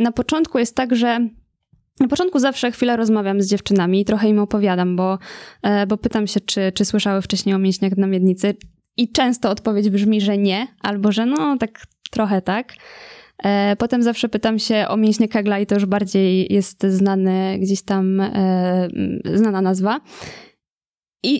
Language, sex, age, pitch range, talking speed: Polish, female, 20-39, 195-225 Hz, 165 wpm